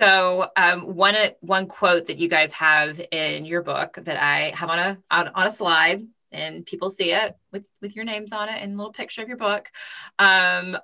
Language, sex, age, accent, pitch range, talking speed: English, female, 20-39, American, 160-205 Hz, 220 wpm